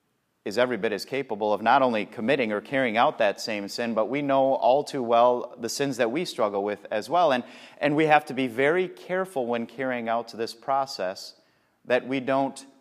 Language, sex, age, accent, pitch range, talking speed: English, male, 30-49, American, 115-140 Hz, 210 wpm